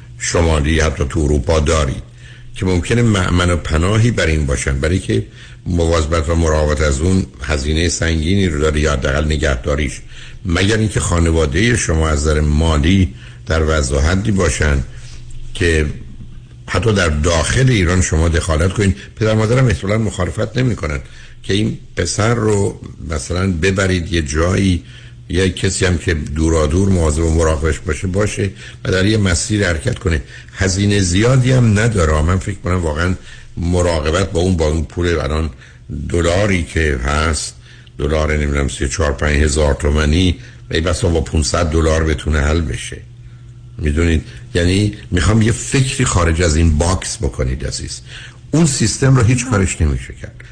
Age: 60-79